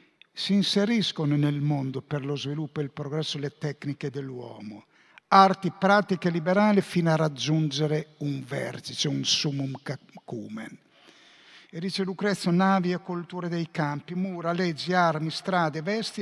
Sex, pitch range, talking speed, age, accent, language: male, 140-180 Hz, 135 wpm, 50-69, native, Italian